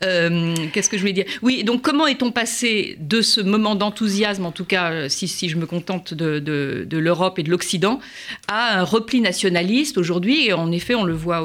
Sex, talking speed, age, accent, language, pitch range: female, 215 wpm, 50-69, French, French, 180-225 Hz